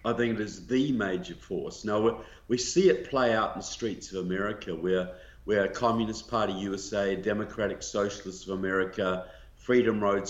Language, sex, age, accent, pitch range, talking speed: English, male, 50-69, Australian, 90-105 Hz, 175 wpm